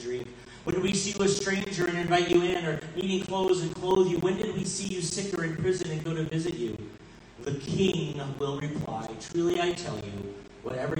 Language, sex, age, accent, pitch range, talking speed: English, male, 30-49, American, 120-160 Hz, 220 wpm